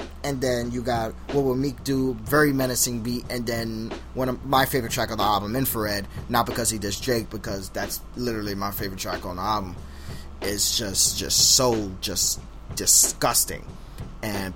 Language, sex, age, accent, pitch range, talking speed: English, male, 20-39, American, 105-130 Hz, 175 wpm